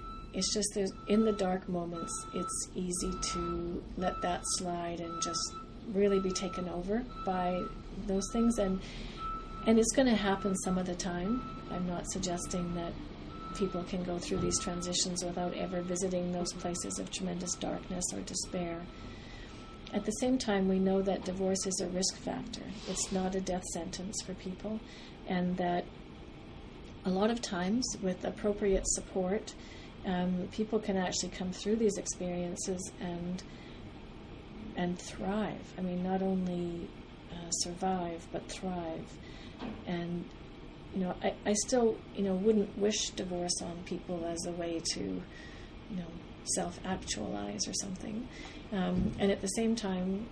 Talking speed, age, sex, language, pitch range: 150 wpm, 40-59, female, English, 175-195 Hz